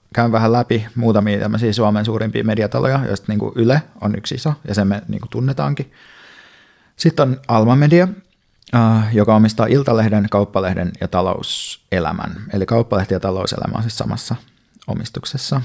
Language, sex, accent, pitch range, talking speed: Finnish, male, native, 100-115 Hz, 140 wpm